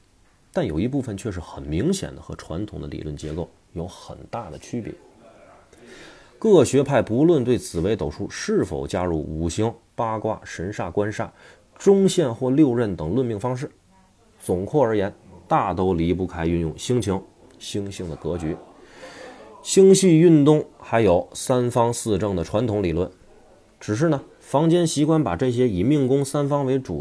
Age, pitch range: 30-49, 85-125 Hz